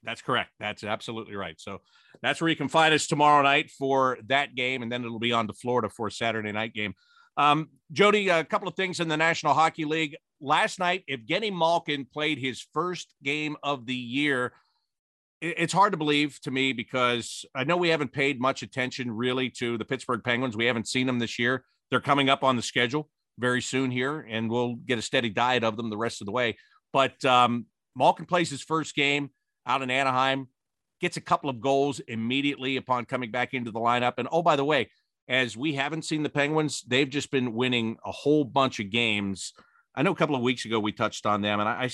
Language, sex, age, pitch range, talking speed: English, male, 50-69, 120-150 Hz, 220 wpm